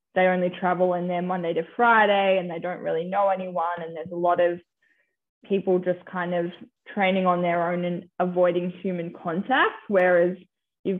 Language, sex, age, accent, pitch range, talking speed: English, female, 10-29, Australian, 175-200 Hz, 180 wpm